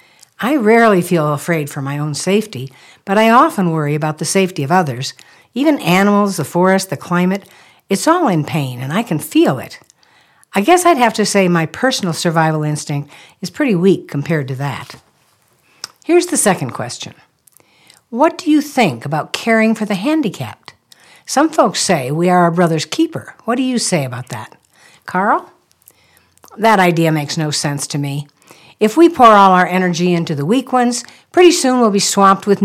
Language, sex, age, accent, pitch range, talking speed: English, female, 60-79, American, 150-220 Hz, 180 wpm